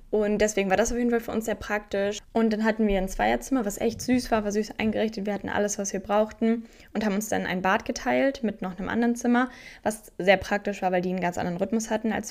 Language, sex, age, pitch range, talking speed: German, female, 10-29, 180-220 Hz, 265 wpm